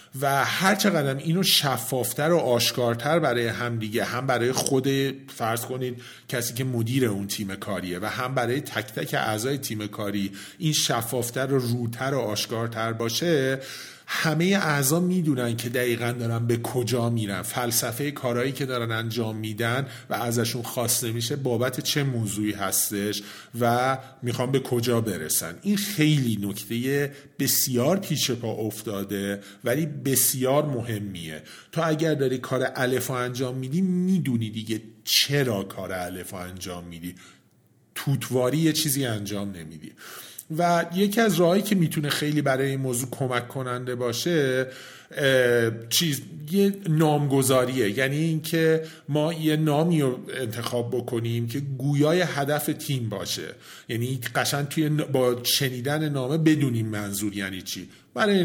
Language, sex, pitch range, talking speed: Persian, male, 115-145 Hz, 135 wpm